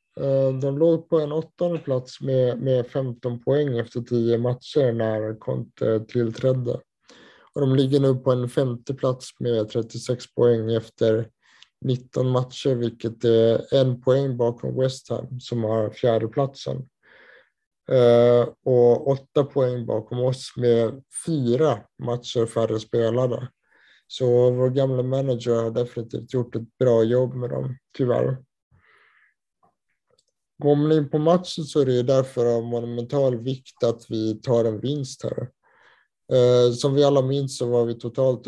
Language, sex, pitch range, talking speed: Swedish, male, 115-135 Hz, 140 wpm